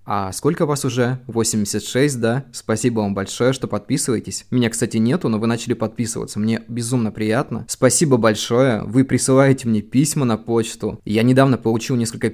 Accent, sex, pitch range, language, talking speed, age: native, male, 110-125 Hz, Russian, 160 wpm, 20-39